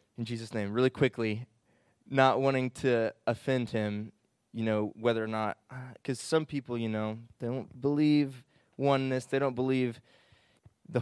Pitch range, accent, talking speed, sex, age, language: 110-130 Hz, American, 150 wpm, male, 20-39, English